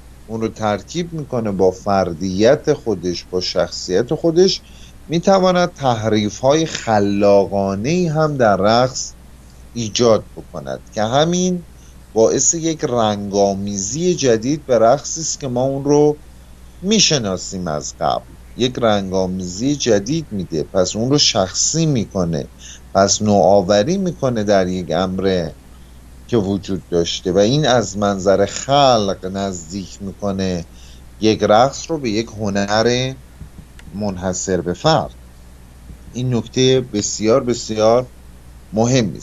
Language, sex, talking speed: Persian, male, 110 wpm